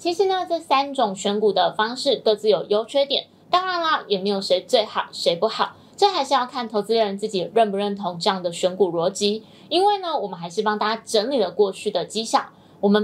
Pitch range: 205-275 Hz